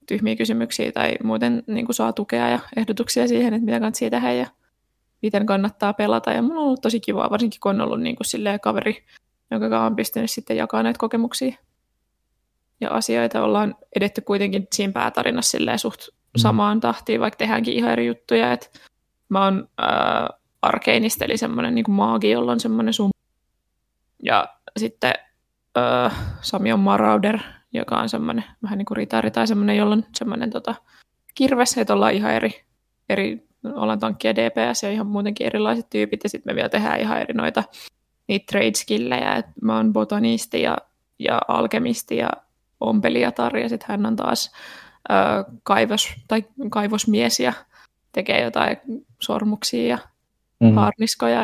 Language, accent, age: Finnish, native, 20-39